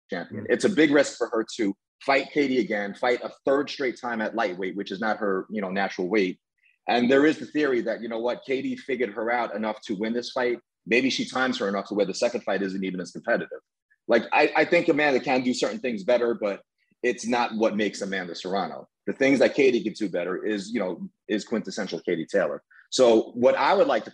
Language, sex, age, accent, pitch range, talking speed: English, male, 30-49, American, 105-135 Hz, 235 wpm